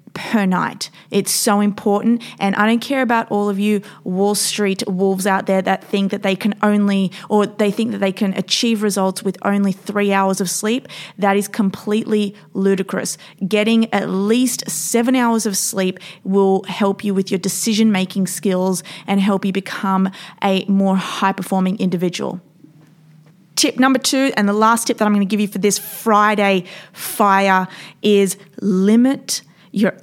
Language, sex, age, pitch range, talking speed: English, female, 20-39, 185-210 Hz, 170 wpm